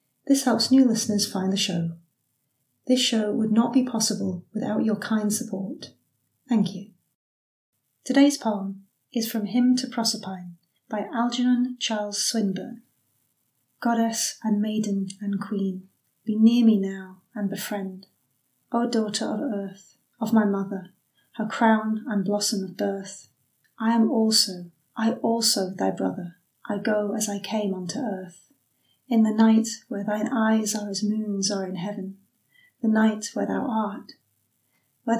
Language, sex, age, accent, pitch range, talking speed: English, female, 30-49, British, 195-225 Hz, 145 wpm